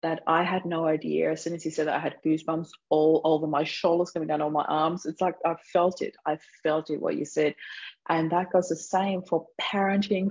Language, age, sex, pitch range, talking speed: English, 30-49, female, 155-180 Hz, 245 wpm